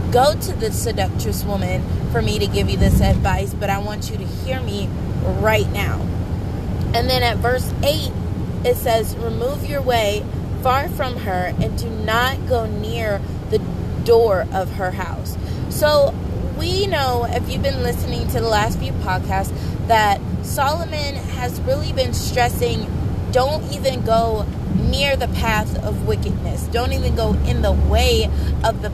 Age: 20-39